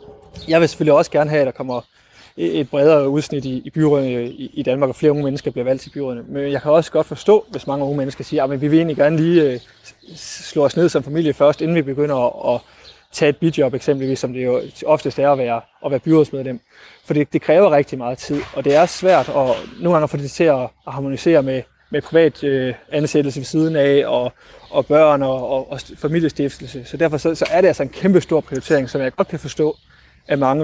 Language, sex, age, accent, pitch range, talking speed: Danish, male, 20-39, native, 135-160 Hz, 210 wpm